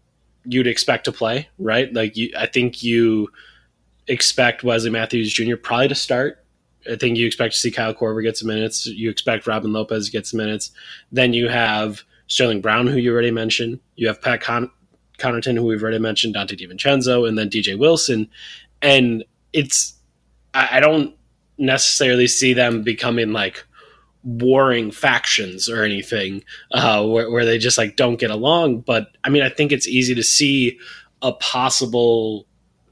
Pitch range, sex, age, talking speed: 110-130 Hz, male, 20-39, 165 wpm